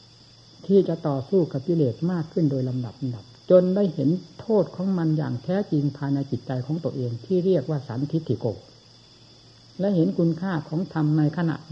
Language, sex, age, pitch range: Thai, female, 60-79, 125-170 Hz